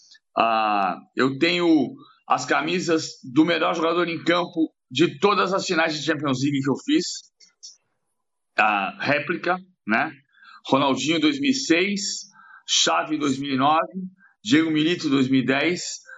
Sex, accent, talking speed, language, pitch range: male, Brazilian, 115 wpm, Portuguese, 130-195 Hz